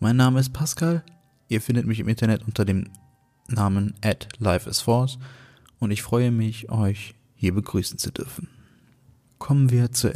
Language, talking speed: German, 150 wpm